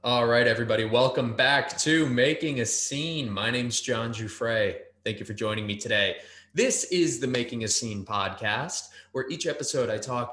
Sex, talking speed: male, 180 wpm